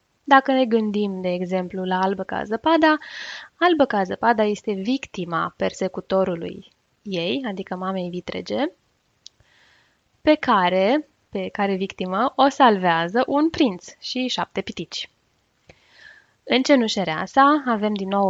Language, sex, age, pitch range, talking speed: Romanian, female, 10-29, 190-250 Hz, 120 wpm